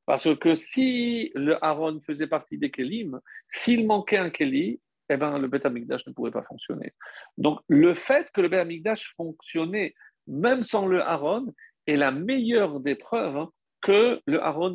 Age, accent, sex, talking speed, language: 50-69, French, male, 165 wpm, French